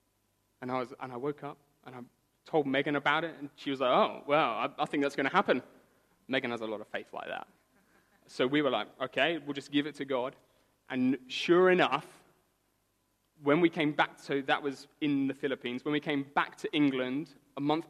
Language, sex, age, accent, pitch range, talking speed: English, male, 20-39, British, 130-155 Hz, 220 wpm